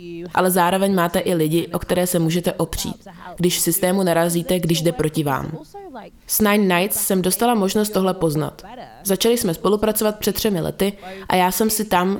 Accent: native